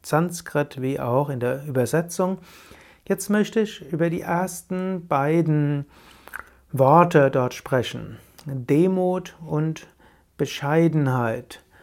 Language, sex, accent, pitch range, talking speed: German, male, German, 140-170 Hz, 95 wpm